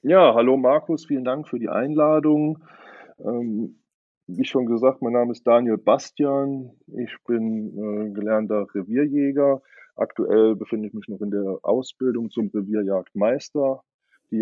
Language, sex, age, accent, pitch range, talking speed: German, male, 20-39, German, 100-120 Hz, 135 wpm